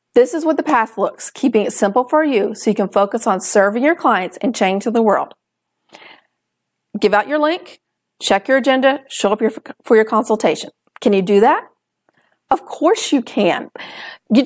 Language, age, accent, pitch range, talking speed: English, 40-59, American, 220-290 Hz, 185 wpm